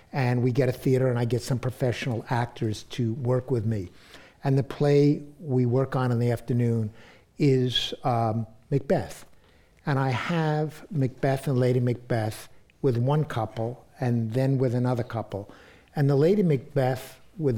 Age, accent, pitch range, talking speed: 60-79, American, 115-140 Hz, 160 wpm